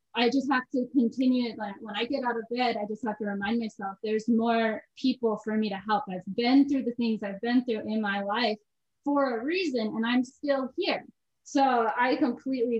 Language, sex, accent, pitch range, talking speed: English, female, American, 215-265 Hz, 220 wpm